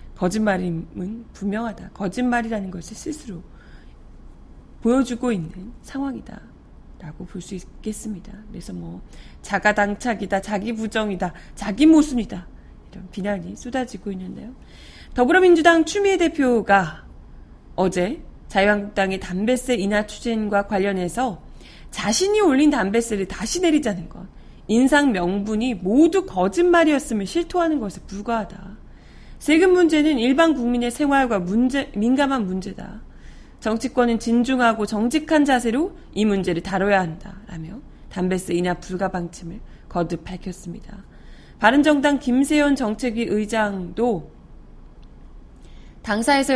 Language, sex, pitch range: Korean, female, 190-260 Hz